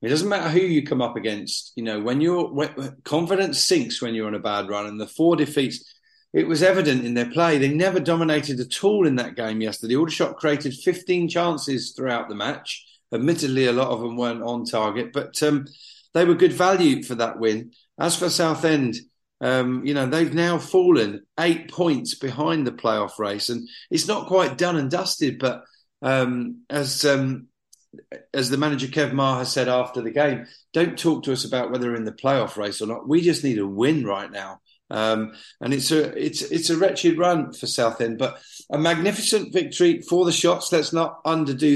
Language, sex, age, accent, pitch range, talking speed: English, male, 40-59, British, 120-165 Hz, 205 wpm